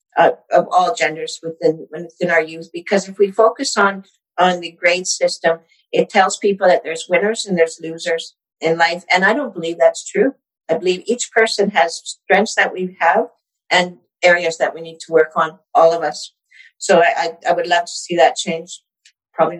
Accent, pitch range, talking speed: American, 160-195 Hz, 200 wpm